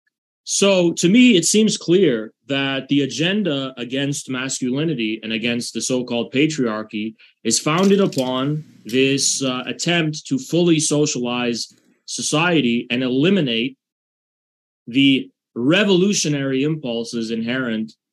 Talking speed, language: 110 wpm, English